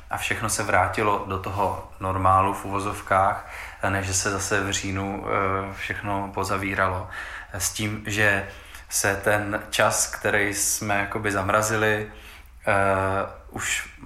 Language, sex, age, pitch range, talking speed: Czech, male, 20-39, 95-105 Hz, 110 wpm